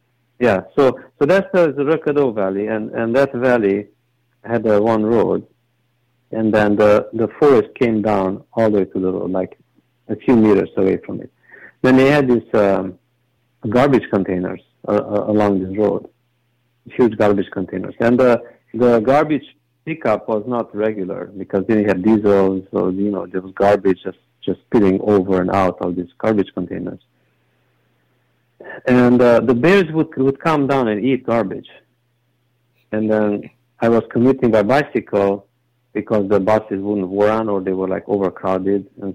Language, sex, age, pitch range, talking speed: English, male, 50-69, 100-120 Hz, 165 wpm